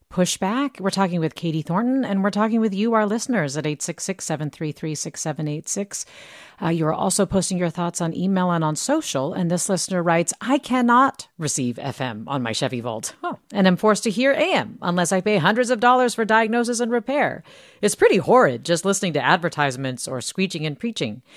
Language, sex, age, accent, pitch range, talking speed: English, female, 40-59, American, 155-210 Hz, 185 wpm